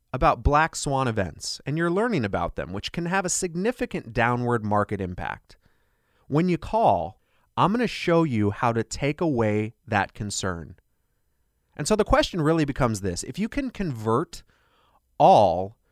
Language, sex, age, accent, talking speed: English, male, 30-49, American, 160 wpm